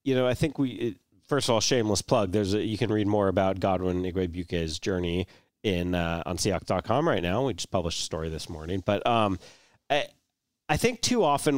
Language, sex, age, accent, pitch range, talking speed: English, male, 30-49, American, 95-125 Hz, 210 wpm